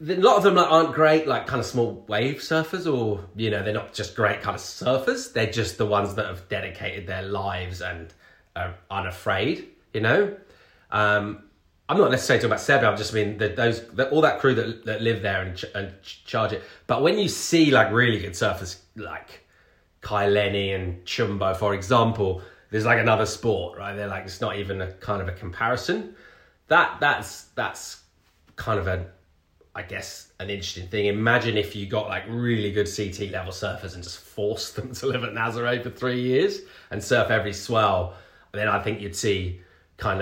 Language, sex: English, male